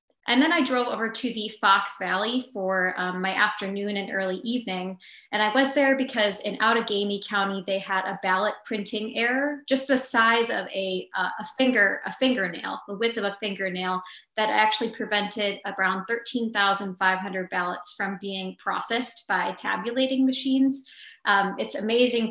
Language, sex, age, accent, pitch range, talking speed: English, female, 20-39, American, 195-245 Hz, 165 wpm